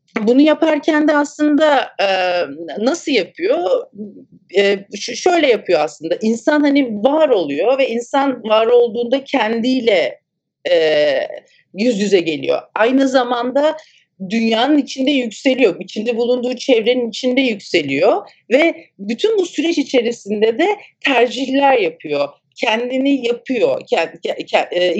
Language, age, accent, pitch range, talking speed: Turkish, 50-69, native, 215-290 Hz, 100 wpm